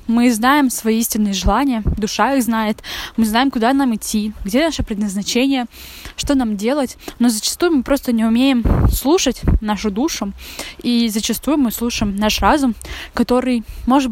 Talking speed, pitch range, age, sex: 155 wpm, 215-270 Hz, 10-29, female